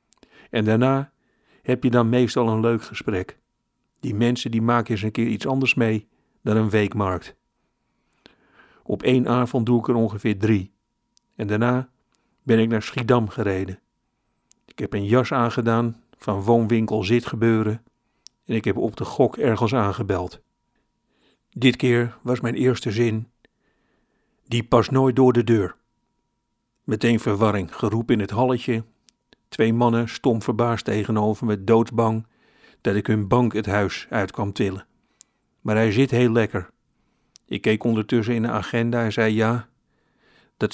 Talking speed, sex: 150 wpm, male